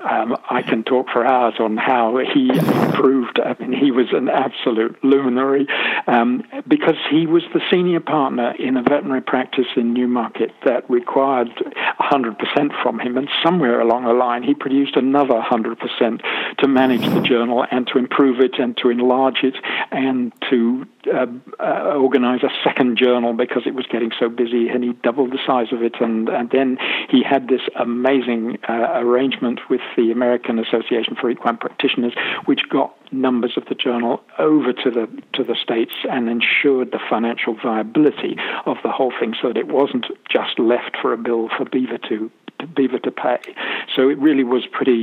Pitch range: 120-135 Hz